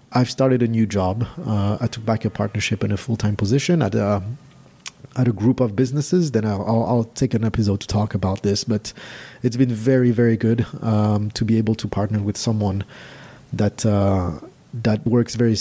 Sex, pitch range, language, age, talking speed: male, 100-120 Hz, English, 30-49, 195 wpm